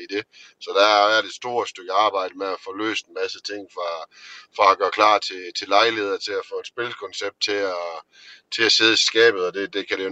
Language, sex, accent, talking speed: Danish, male, native, 245 wpm